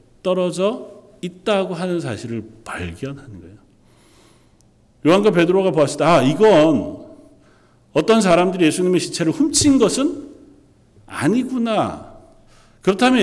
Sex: male